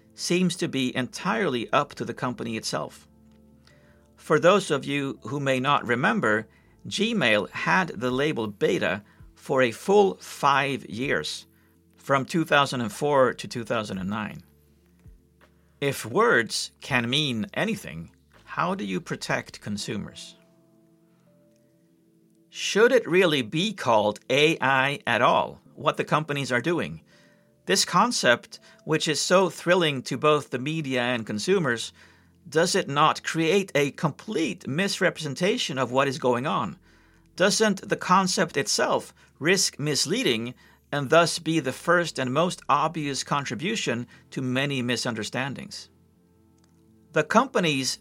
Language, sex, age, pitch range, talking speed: English, male, 50-69, 110-165 Hz, 120 wpm